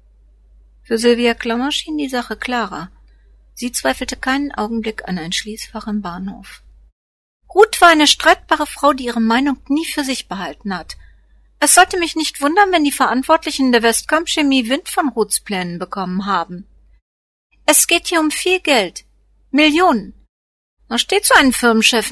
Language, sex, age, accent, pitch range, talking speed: German, female, 50-69, German, 210-310 Hz, 150 wpm